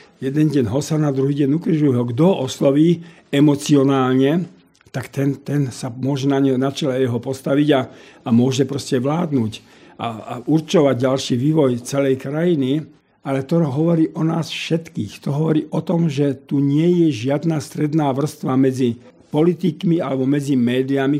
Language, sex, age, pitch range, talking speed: Slovak, male, 50-69, 130-155 Hz, 155 wpm